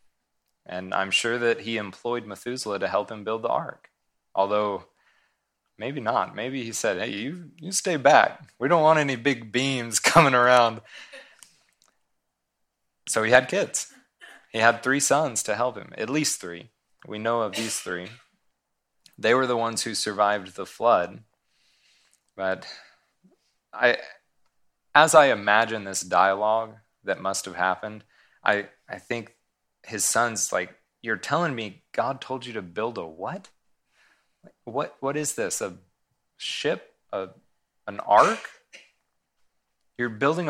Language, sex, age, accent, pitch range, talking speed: English, male, 20-39, American, 105-135 Hz, 145 wpm